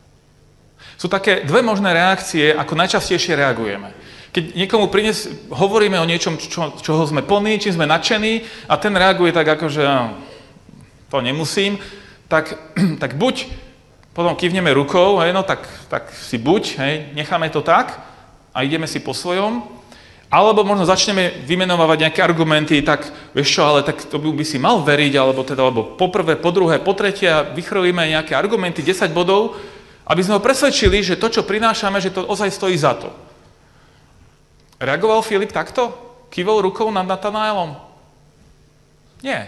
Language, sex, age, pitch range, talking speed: Slovak, male, 40-59, 155-200 Hz, 155 wpm